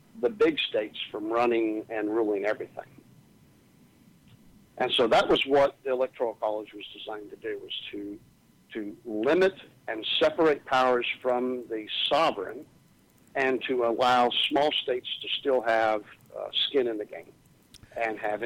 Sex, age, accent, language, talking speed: male, 60-79, American, English, 145 wpm